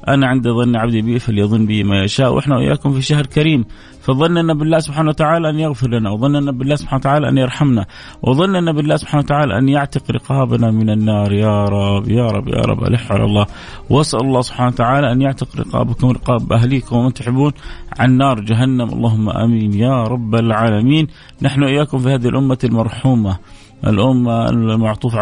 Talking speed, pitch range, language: 170 wpm, 110-135 Hz, Arabic